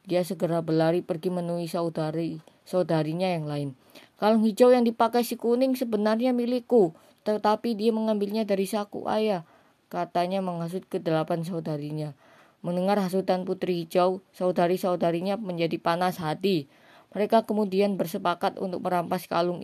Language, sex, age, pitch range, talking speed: Indonesian, female, 20-39, 175-210 Hz, 125 wpm